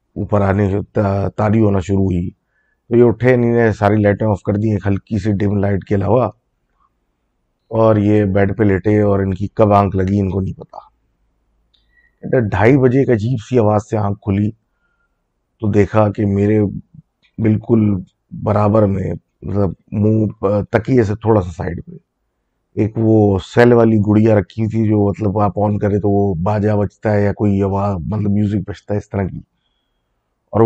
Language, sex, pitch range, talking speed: Urdu, male, 100-110 Hz, 170 wpm